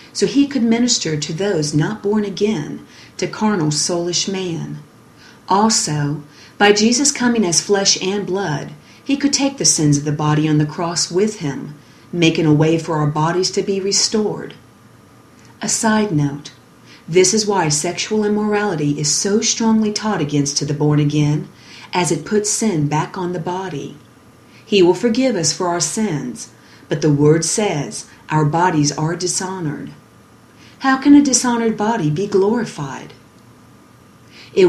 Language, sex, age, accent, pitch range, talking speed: English, female, 40-59, American, 155-215 Hz, 155 wpm